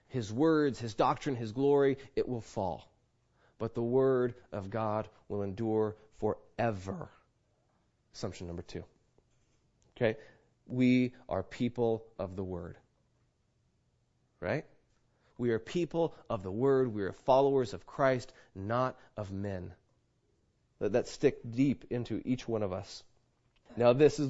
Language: English